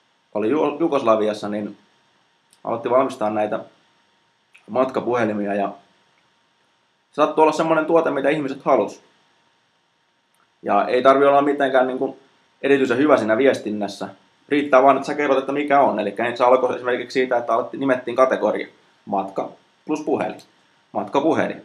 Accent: native